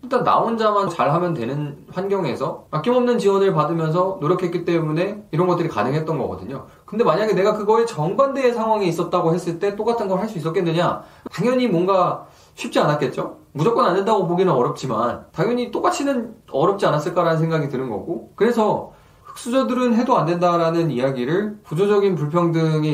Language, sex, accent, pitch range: Korean, male, native, 135-195 Hz